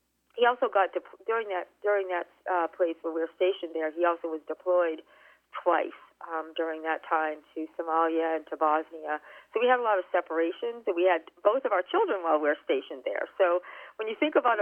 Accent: American